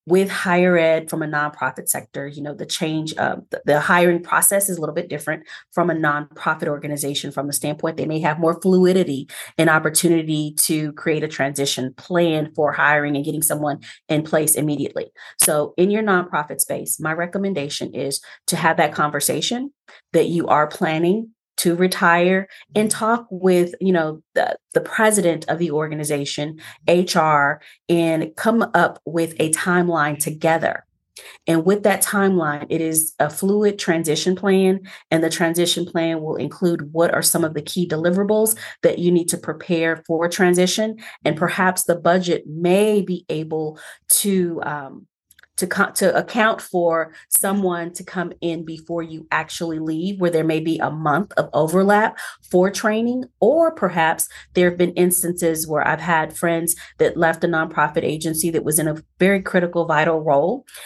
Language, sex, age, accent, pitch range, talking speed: English, female, 30-49, American, 155-180 Hz, 165 wpm